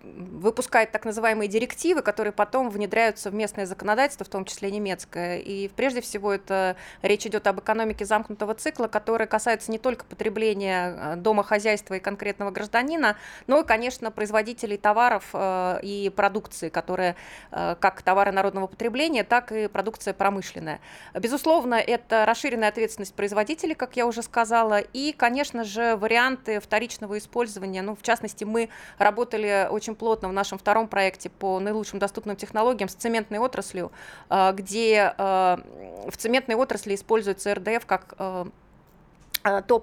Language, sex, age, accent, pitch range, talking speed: Russian, female, 20-39, native, 195-230 Hz, 135 wpm